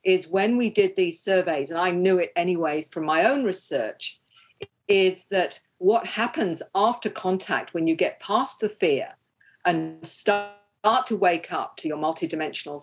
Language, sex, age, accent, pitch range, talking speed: English, female, 50-69, British, 165-215 Hz, 165 wpm